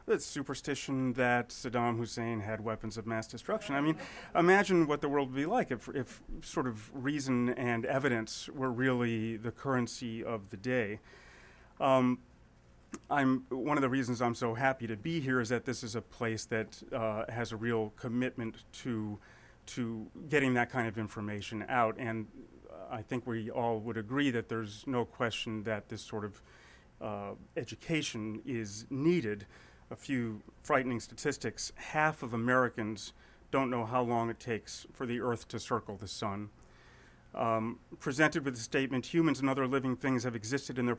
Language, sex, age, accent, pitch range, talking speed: English, male, 30-49, American, 110-130 Hz, 175 wpm